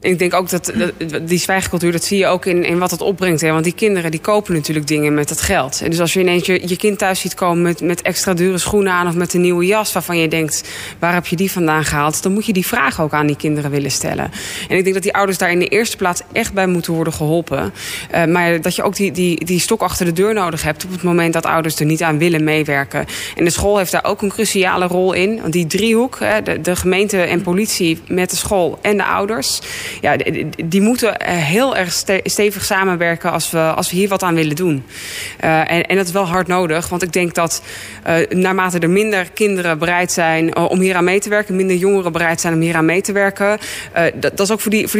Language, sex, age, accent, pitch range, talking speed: Dutch, female, 20-39, Dutch, 165-195 Hz, 250 wpm